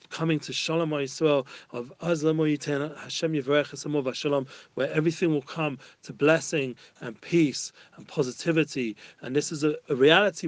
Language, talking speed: English, 120 wpm